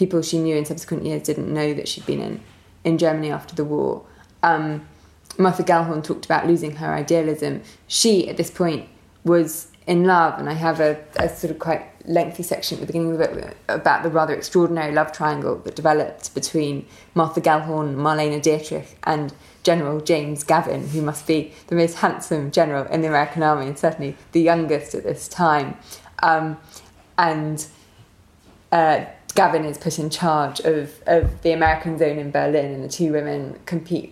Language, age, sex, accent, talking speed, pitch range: English, 20-39, female, British, 180 wpm, 150-170 Hz